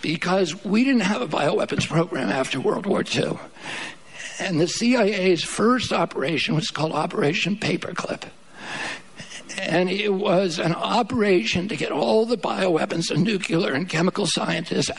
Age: 60-79